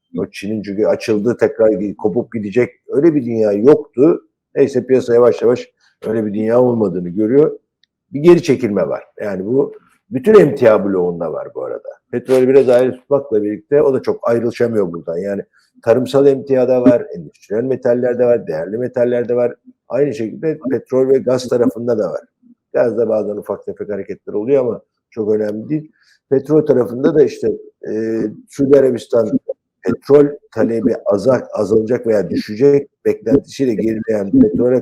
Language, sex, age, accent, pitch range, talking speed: Turkish, male, 50-69, native, 115-145 Hz, 150 wpm